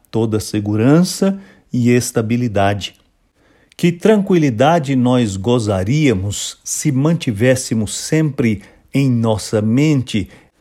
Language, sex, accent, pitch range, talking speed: English, male, Brazilian, 115-150 Hz, 80 wpm